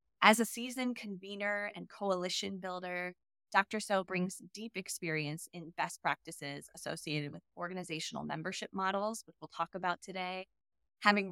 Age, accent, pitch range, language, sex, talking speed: 20-39, American, 175-205 Hz, English, female, 140 wpm